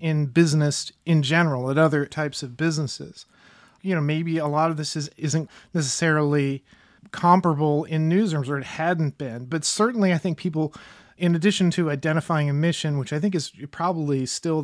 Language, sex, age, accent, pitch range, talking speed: English, male, 30-49, American, 145-175 Hz, 175 wpm